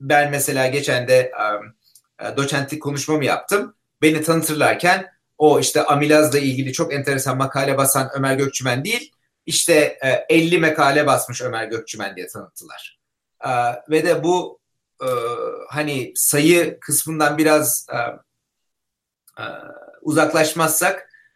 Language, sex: Turkish, male